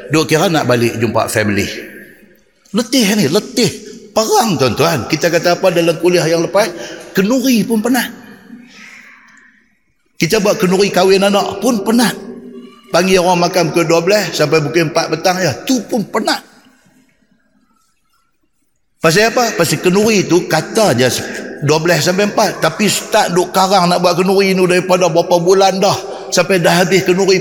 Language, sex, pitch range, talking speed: Malay, male, 150-220 Hz, 145 wpm